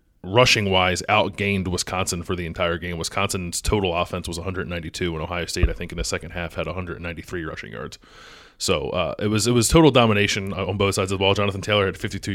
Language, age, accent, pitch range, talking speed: English, 20-39, American, 90-105 Hz, 215 wpm